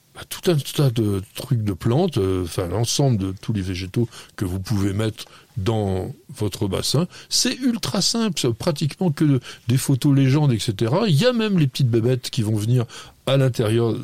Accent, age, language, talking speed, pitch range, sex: French, 60-79, French, 180 wpm, 115-150 Hz, male